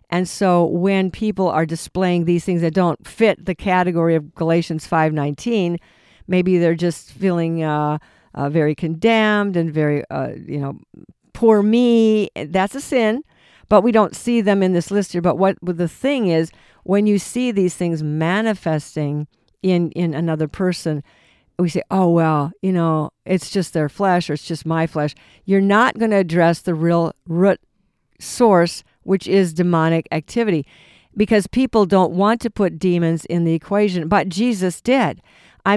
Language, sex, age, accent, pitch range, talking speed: English, female, 50-69, American, 165-205 Hz, 170 wpm